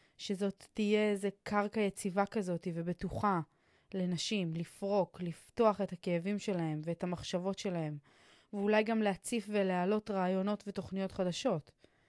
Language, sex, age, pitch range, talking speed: Hebrew, female, 20-39, 185-220 Hz, 115 wpm